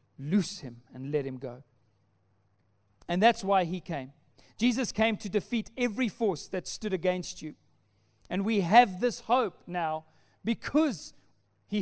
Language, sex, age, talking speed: English, male, 40-59, 145 wpm